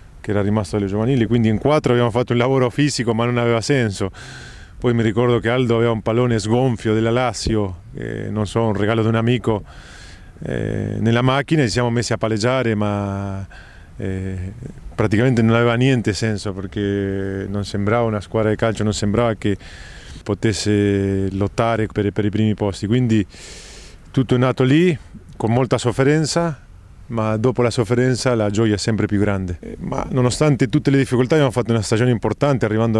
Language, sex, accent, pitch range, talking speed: Italian, male, Argentinian, 105-125 Hz, 180 wpm